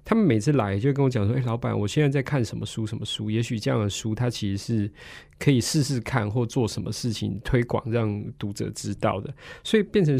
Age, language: 20-39, Chinese